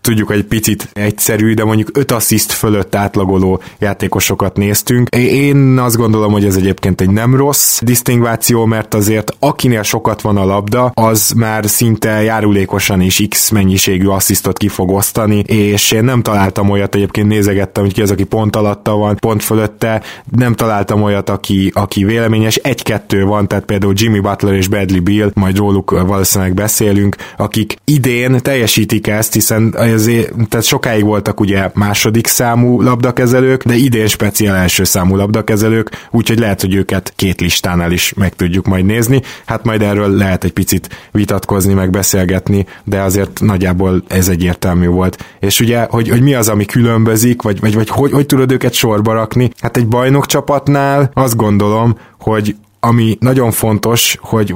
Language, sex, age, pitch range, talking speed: Hungarian, male, 20-39, 100-115 Hz, 160 wpm